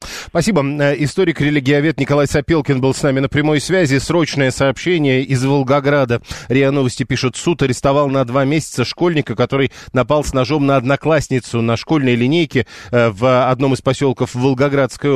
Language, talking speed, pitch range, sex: Russian, 145 wpm, 120-145 Hz, male